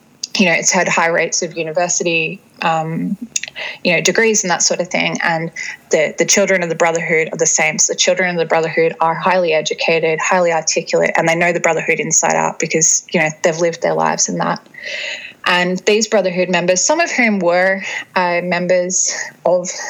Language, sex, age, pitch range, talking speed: English, female, 20-39, 170-195 Hz, 195 wpm